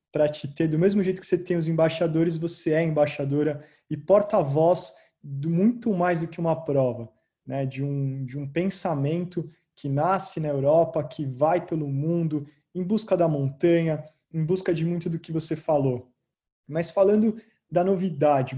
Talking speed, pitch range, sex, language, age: 170 wpm, 145-175 Hz, male, Portuguese, 20-39